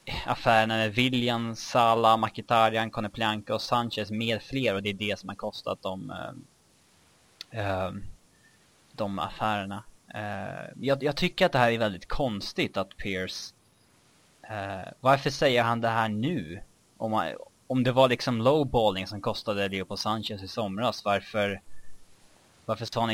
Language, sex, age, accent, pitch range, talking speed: Swedish, male, 20-39, Norwegian, 95-115 Hz, 135 wpm